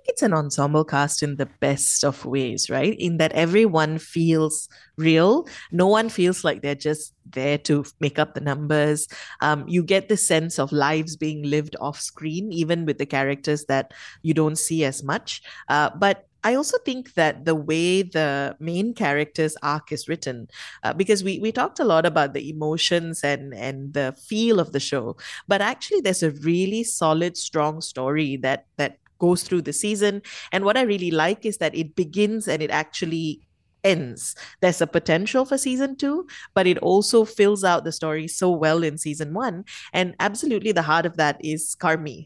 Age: 30-49